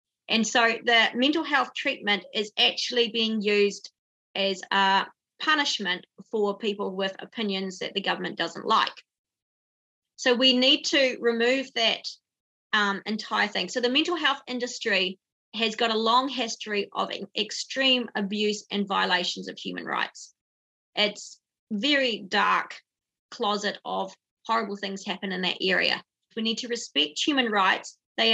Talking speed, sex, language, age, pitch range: 140 wpm, female, English, 30-49, 200-245 Hz